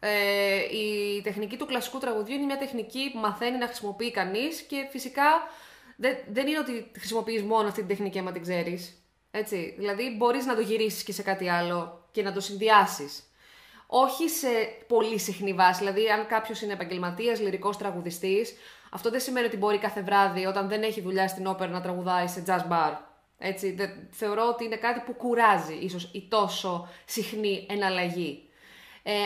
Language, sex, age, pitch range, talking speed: Greek, female, 20-39, 190-230 Hz, 170 wpm